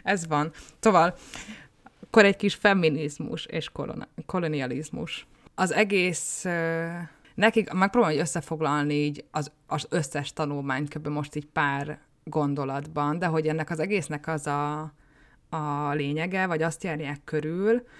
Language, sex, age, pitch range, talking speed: Hungarian, female, 20-39, 150-170 Hz, 125 wpm